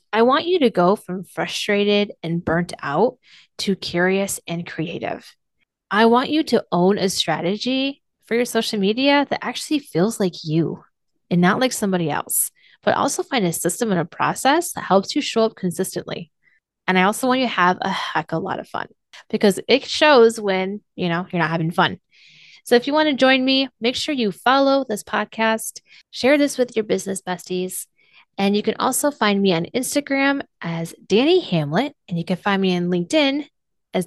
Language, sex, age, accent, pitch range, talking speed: English, female, 20-39, American, 175-240 Hz, 190 wpm